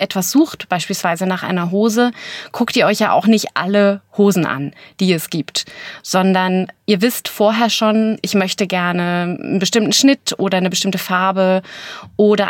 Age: 30-49